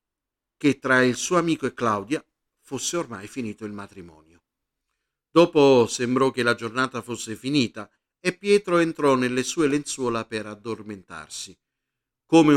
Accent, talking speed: native, 135 wpm